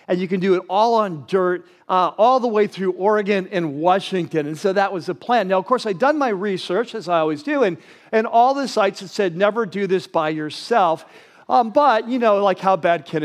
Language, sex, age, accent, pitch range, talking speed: English, male, 40-59, American, 175-220 Hz, 240 wpm